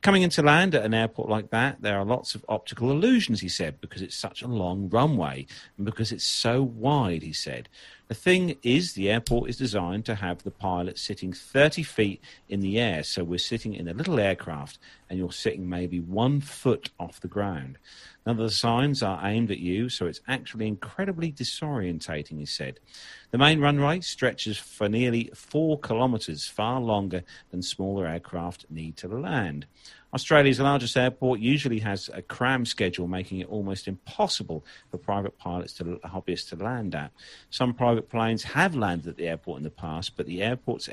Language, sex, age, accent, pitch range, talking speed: English, male, 40-59, British, 90-125 Hz, 185 wpm